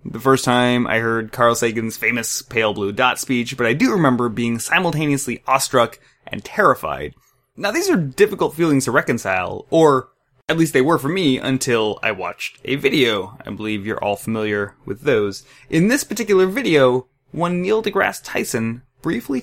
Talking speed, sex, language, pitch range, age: 175 wpm, male, English, 125-170 Hz, 20-39